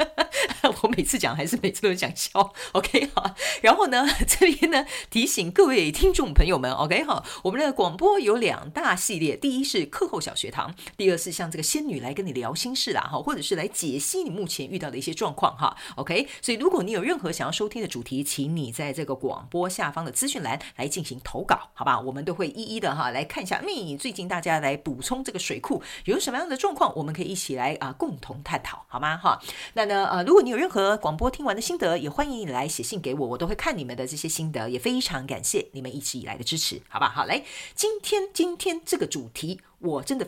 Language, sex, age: Chinese, female, 40-59